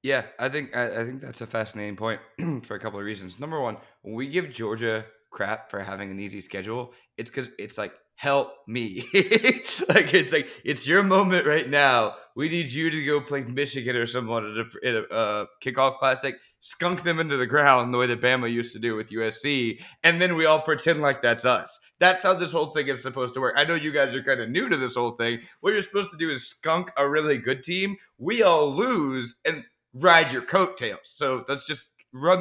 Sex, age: male, 20-39